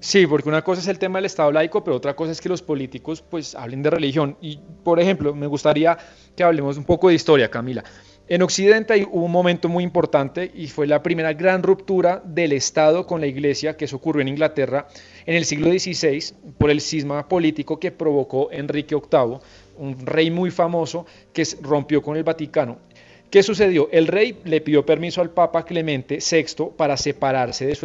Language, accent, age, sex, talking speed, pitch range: Spanish, Colombian, 30-49, male, 200 wpm, 145-175 Hz